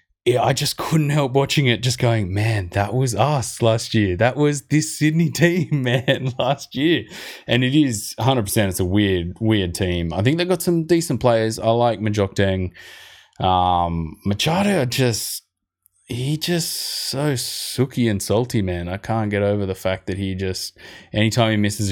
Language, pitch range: English, 95-125 Hz